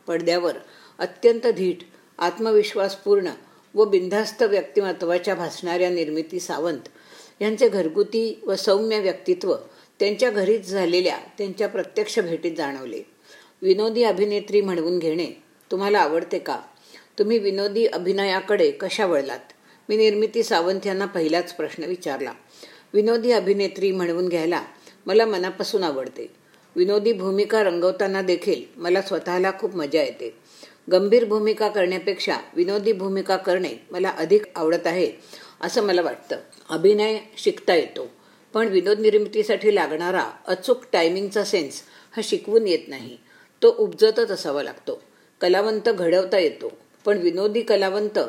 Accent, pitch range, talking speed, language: native, 185-240 Hz, 115 wpm, Marathi